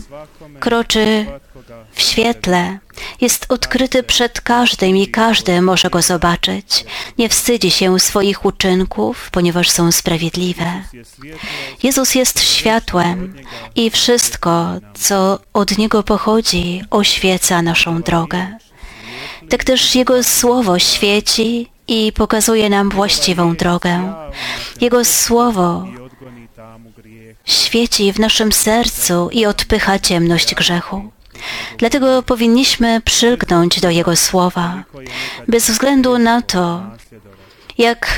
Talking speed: 100 wpm